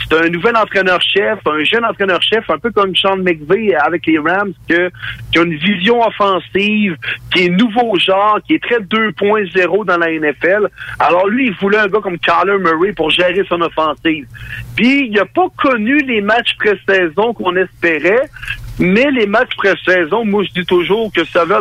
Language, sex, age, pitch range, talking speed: French, male, 60-79, 165-210 Hz, 180 wpm